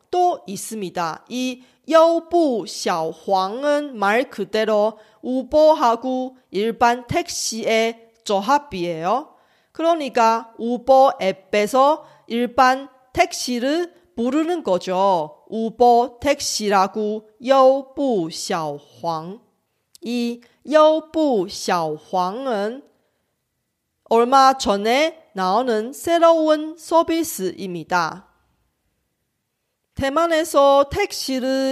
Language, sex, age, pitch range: Korean, female, 40-59, 215-290 Hz